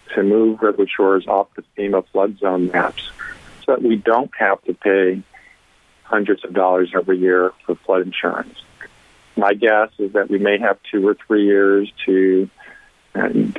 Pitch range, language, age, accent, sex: 95-100 Hz, Chinese, 50-69, American, male